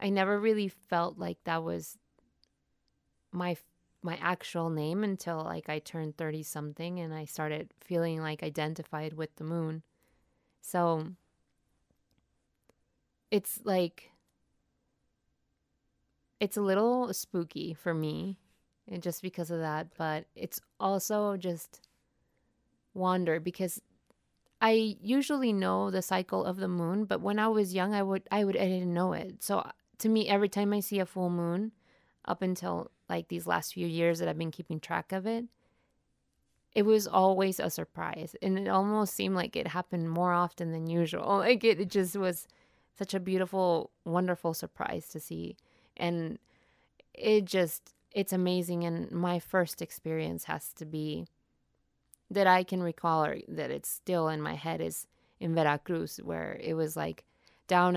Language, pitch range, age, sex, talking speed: English, 165-195 Hz, 20-39, female, 155 wpm